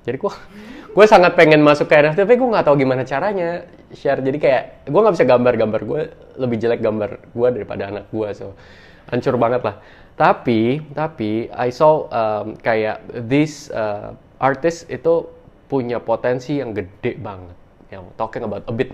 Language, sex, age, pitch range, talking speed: Indonesian, male, 20-39, 100-140 Hz, 160 wpm